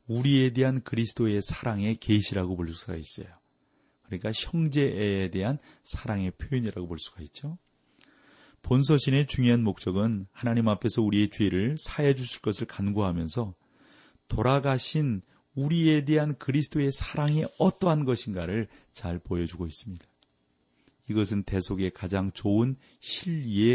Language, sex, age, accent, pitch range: Korean, male, 40-59, native, 95-125 Hz